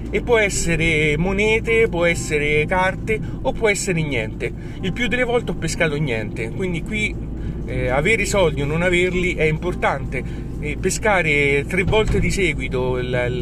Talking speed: 155 wpm